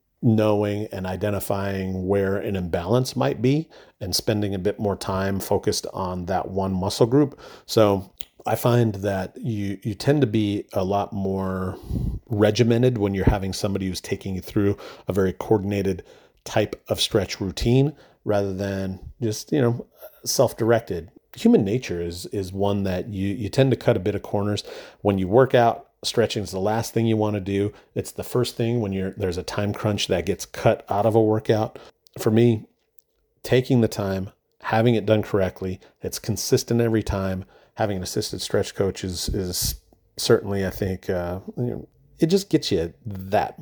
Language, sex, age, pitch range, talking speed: English, male, 40-59, 95-120 Hz, 175 wpm